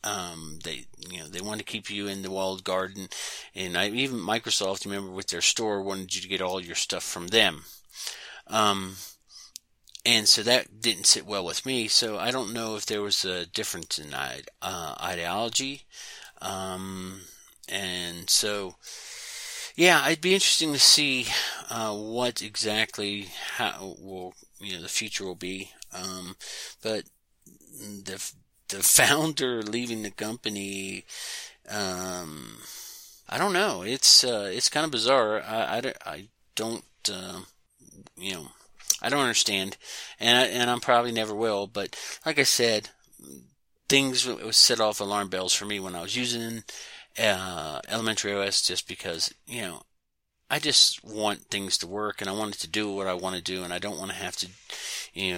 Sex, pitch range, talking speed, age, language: male, 95-110 Hz, 165 wpm, 40-59, English